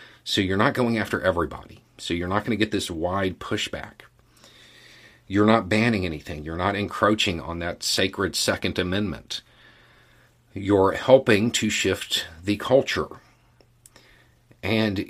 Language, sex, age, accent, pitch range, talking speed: English, male, 50-69, American, 95-120 Hz, 135 wpm